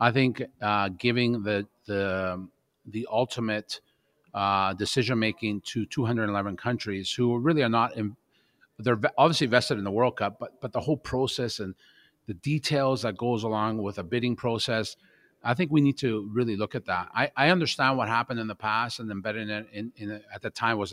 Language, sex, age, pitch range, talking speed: English, male, 40-59, 105-130 Hz, 190 wpm